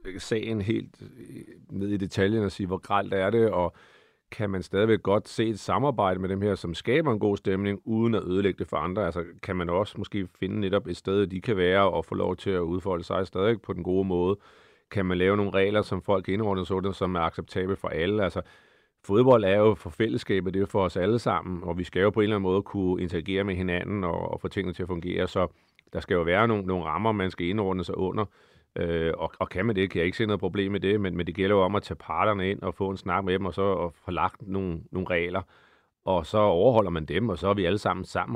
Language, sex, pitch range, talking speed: Danish, male, 90-100 Hz, 255 wpm